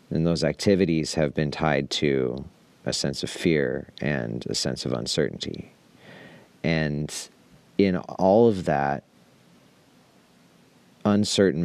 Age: 40-59